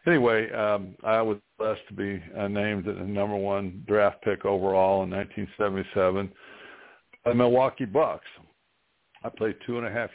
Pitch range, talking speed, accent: 95-105 Hz, 155 wpm, American